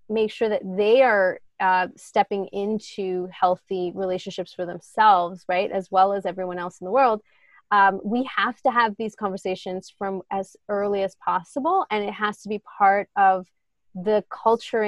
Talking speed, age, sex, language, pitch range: 170 wpm, 20-39, female, English, 185-215 Hz